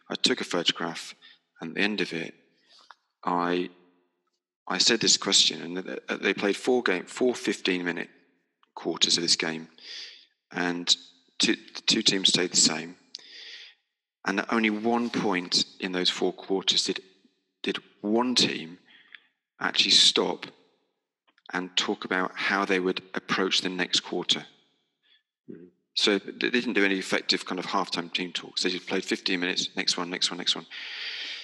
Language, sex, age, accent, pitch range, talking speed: English, male, 30-49, British, 90-110 Hz, 155 wpm